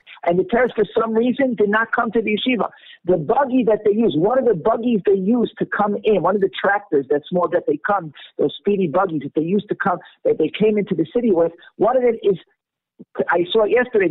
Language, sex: English, male